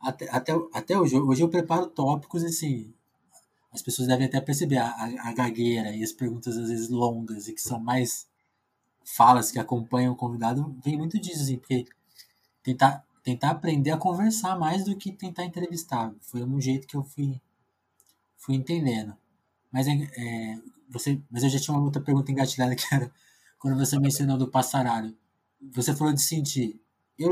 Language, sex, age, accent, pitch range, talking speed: Portuguese, male, 20-39, Brazilian, 120-150 Hz, 170 wpm